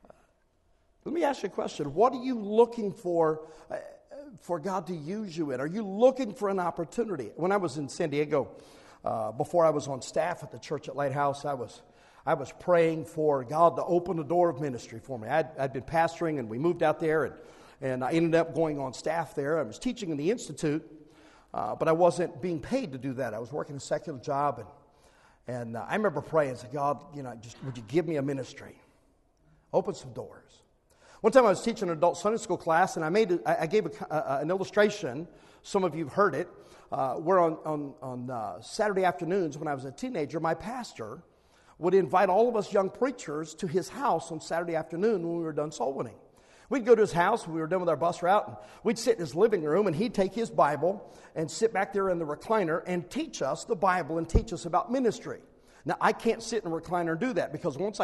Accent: American